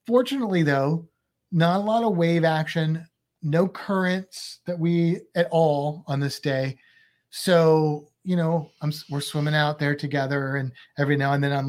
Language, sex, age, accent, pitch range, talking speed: English, male, 30-49, American, 140-180 Hz, 165 wpm